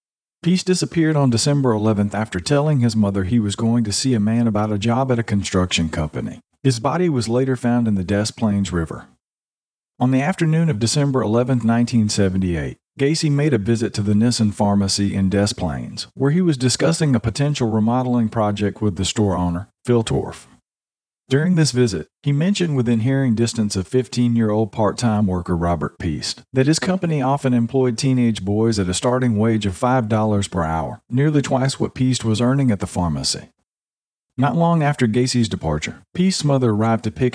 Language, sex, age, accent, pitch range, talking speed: English, male, 40-59, American, 100-135 Hz, 185 wpm